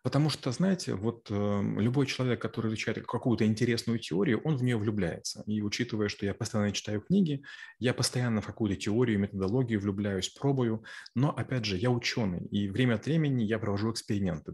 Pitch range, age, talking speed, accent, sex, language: 105-125 Hz, 30-49, 180 wpm, native, male, Russian